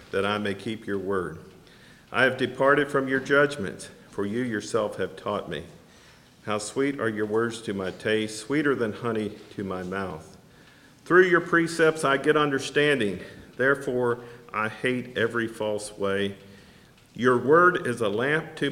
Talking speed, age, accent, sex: 160 wpm, 50-69, American, male